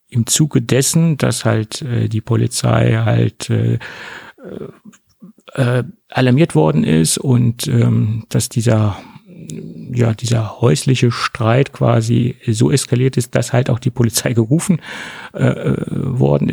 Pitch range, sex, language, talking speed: 110-125 Hz, male, German, 105 wpm